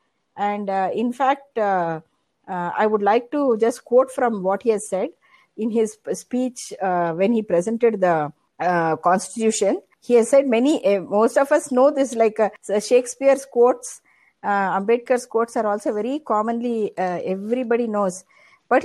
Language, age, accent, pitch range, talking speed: Hindi, 60-79, native, 200-275 Hz, 165 wpm